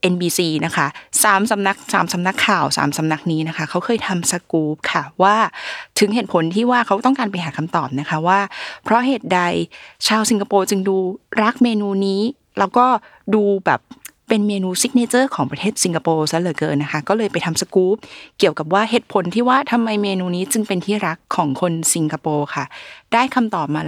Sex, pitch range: female, 165-215 Hz